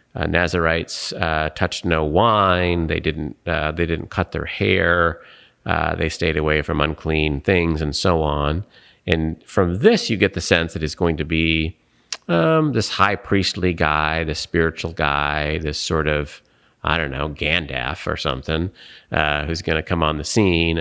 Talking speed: 175 wpm